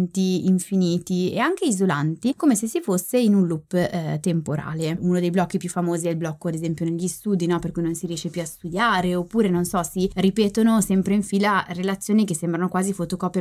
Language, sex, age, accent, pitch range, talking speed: Italian, female, 20-39, native, 165-195 Hz, 205 wpm